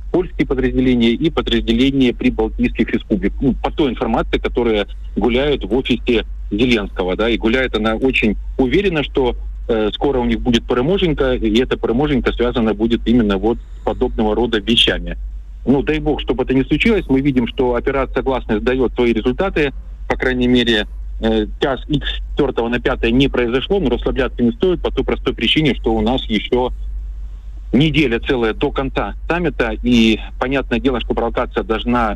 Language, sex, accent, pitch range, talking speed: Russian, male, native, 110-130 Hz, 165 wpm